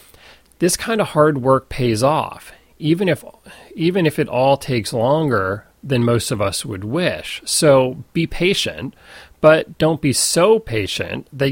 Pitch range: 115-155 Hz